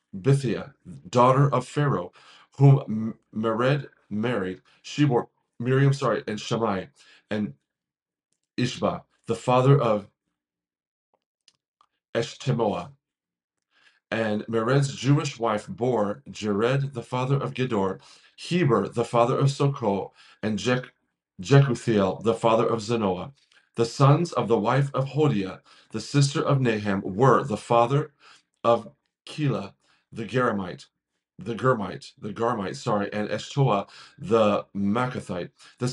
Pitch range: 115-140 Hz